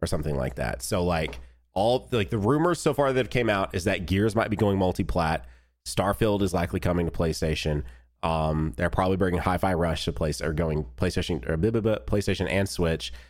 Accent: American